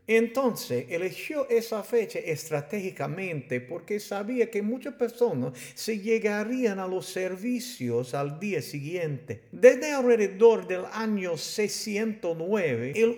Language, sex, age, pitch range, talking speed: English, male, 50-69, 130-215 Hz, 110 wpm